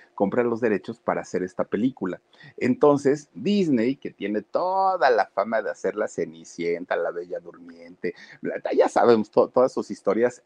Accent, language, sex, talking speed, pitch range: Mexican, Spanish, male, 150 wpm, 100-145 Hz